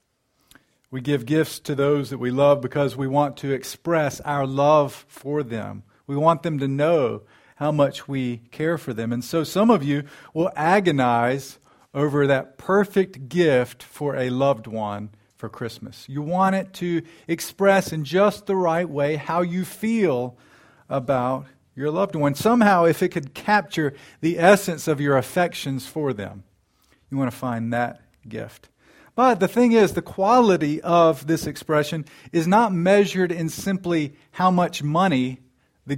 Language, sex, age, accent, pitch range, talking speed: English, male, 40-59, American, 130-175 Hz, 165 wpm